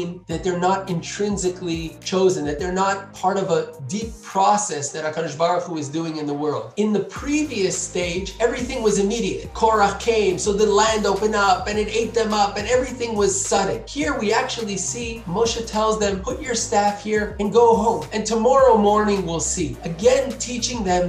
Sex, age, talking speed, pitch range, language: male, 30-49, 190 wpm, 175-215 Hz, English